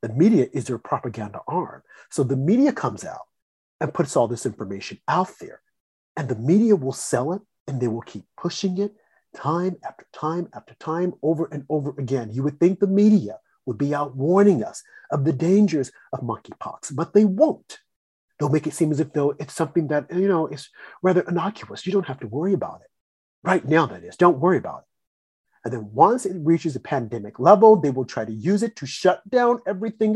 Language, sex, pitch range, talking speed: English, male, 135-190 Hz, 210 wpm